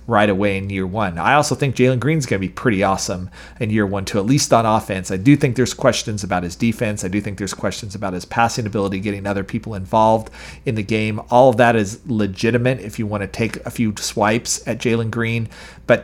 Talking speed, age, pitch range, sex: 240 wpm, 40-59, 100-120 Hz, male